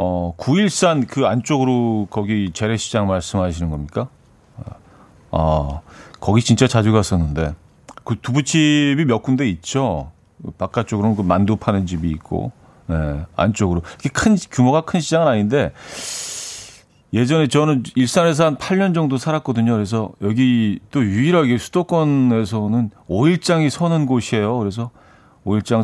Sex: male